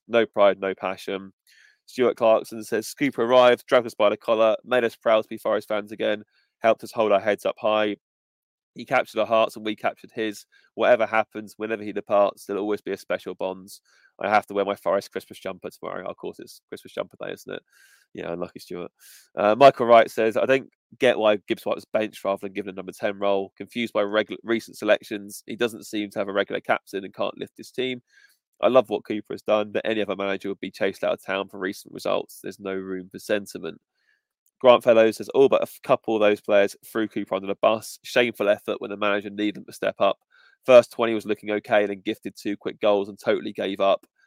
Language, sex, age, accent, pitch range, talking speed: English, male, 20-39, British, 100-110 Hz, 225 wpm